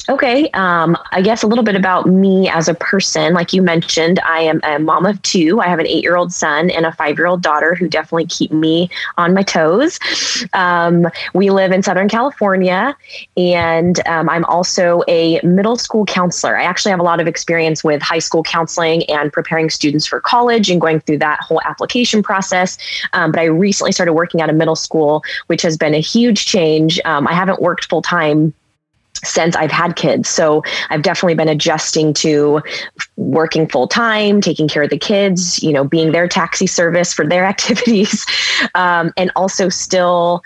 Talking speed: 195 wpm